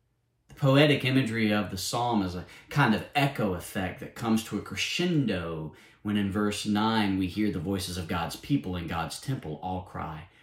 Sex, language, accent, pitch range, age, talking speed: male, English, American, 95-120 Hz, 40-59, 185 wpm